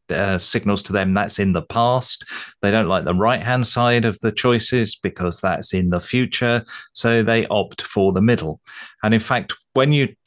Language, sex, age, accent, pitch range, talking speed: English, male, 30-49, British, 95-110 Hz, 200 wpm